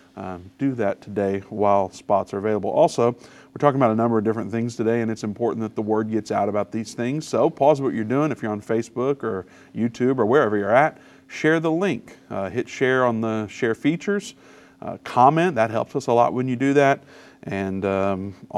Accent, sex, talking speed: American, male, 215 wpm